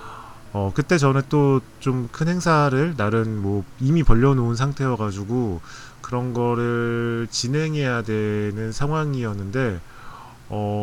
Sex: male